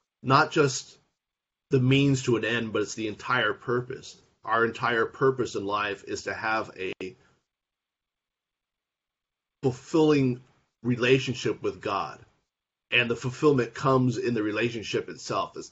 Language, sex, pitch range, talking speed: English, male, 105-130 Hz, 130 wpm